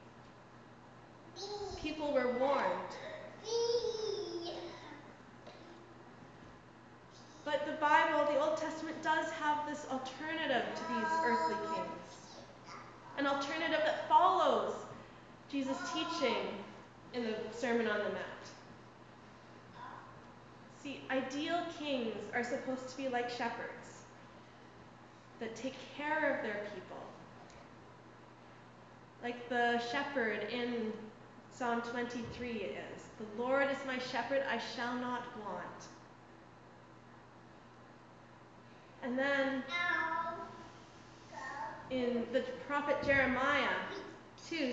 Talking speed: 90 wpm